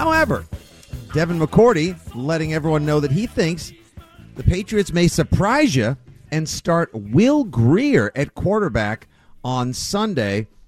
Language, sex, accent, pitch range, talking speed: English, male, American, 110-145 Hz, 125 wpm